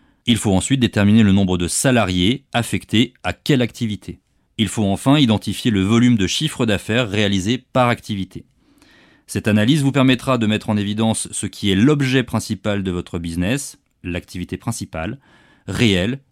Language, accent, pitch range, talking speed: French, French, 100-125 Hz, 160 wpm